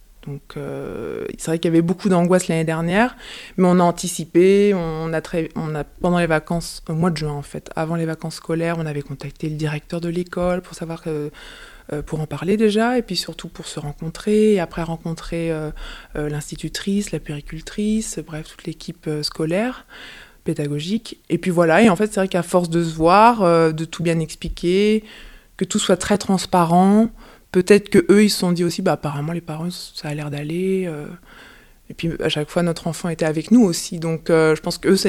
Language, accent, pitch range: French, French, 155-180 Hz